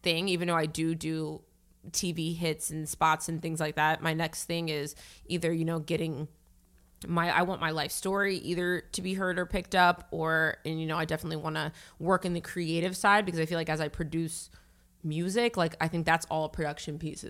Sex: female